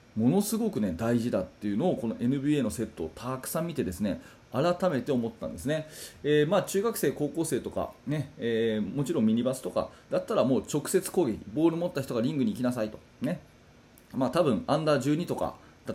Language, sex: Japanese, male